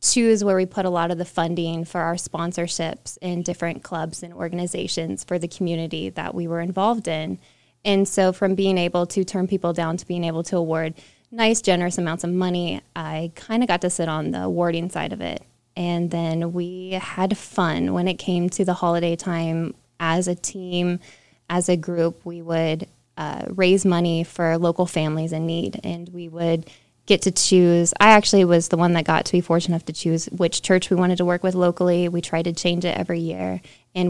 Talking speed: 210 wpm